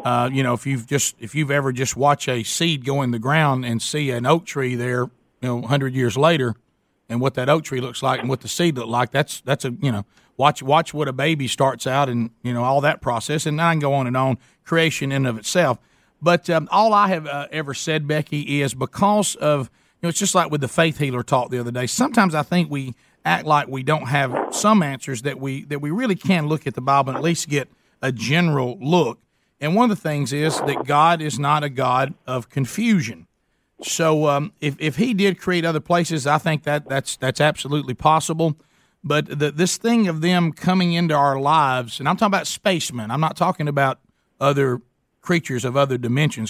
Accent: American